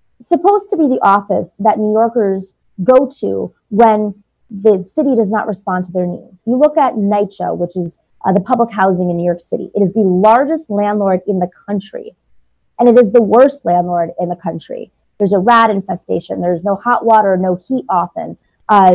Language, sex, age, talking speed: English, female, 30-49, 195 wpm